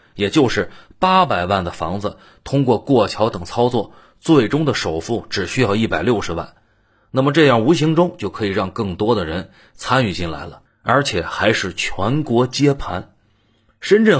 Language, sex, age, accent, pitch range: Chinese, male, 30-49, native, 100-140 Hz